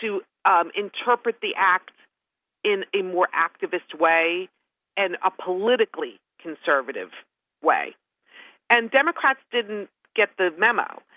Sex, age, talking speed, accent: female, 40-59, 115 wpm, American